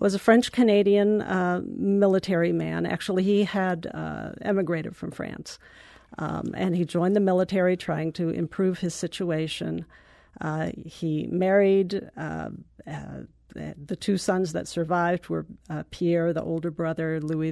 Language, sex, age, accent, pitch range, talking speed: English, female, 50-69, American, 160-200 Hz, 135 wpm